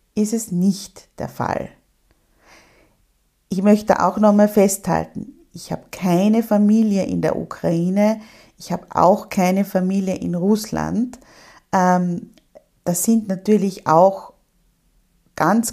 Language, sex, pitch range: German, female, 180-230 Hz